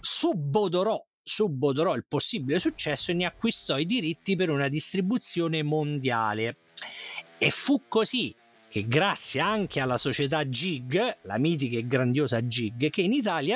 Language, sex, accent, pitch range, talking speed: Italian, male, native, 120-175 Hz, 135 wpm